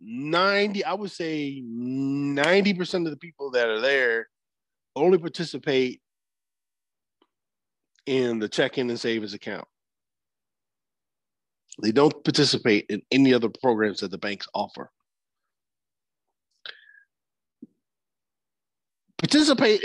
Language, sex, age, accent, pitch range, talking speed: English, male, 40-59, American, 135-180 Hz, 95 wpm